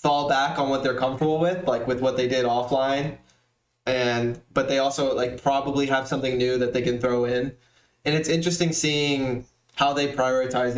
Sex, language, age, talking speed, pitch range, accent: male, English, 20-39, 190 wpm, 120-135 Hz, American